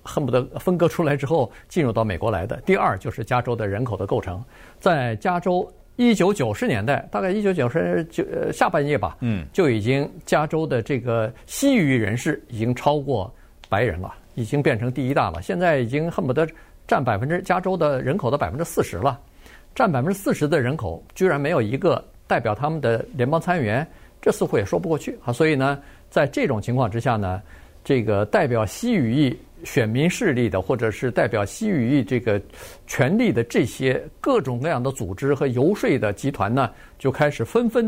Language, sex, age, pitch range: Chinese, male, 50-69, 115-165 Hz